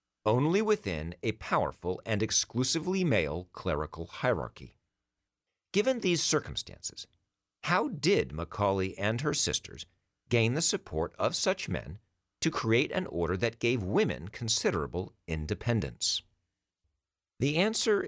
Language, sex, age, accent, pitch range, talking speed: English, male, 50-69, American, 90-130 Hz, 115 wpm